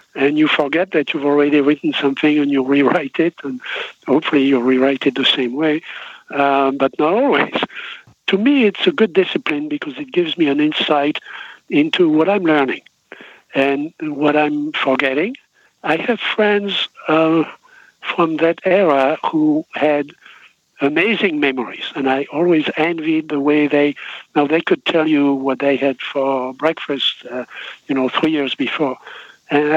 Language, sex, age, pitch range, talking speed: English, male, 60-79, 140-190 Hz, 160 wpm